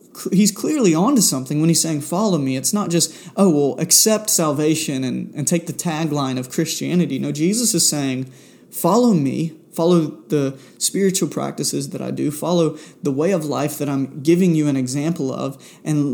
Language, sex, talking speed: English, male, 180 wpm